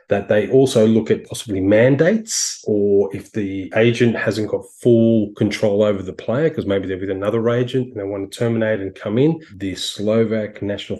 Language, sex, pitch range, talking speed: English, male, 100-135 Hz, 190 wpm